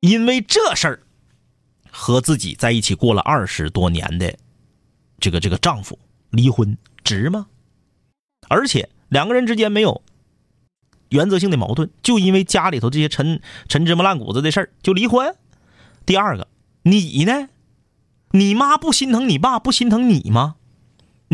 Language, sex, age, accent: Chinese, male, 30-49, native